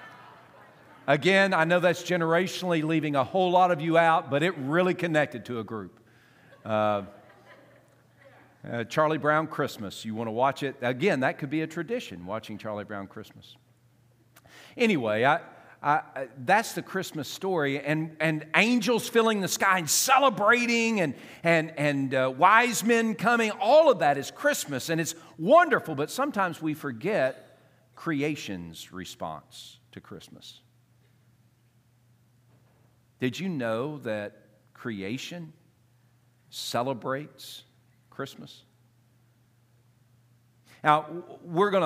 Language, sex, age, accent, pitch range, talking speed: English, male, 50-69, American, 120-165 Hz, 120 wpm